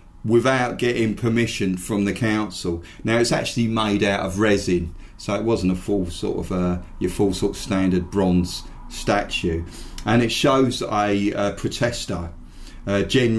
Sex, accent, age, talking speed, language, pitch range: male, British, 40-59, 160 wpm, English, 95-115 Hz